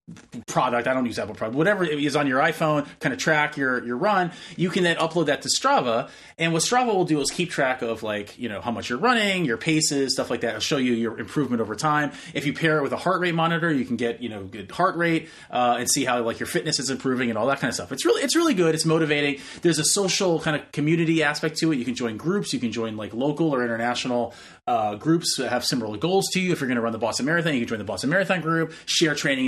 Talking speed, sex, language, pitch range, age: 280 wpm, male, English, 120-165 Hz, 30-49